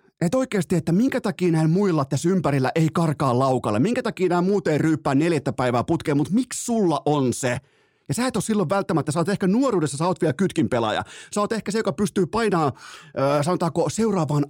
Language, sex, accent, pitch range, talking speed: Finnish, male, native, 135-185 Hz, 205 wpm